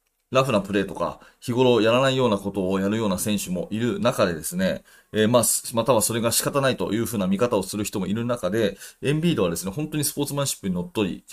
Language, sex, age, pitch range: Japanese, male, 30-49, 100-150 Hz